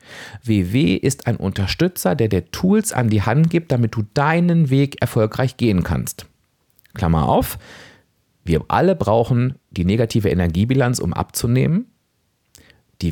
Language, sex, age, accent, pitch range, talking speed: German, male, 40-59, German, 90-140 Hz, 135 wpm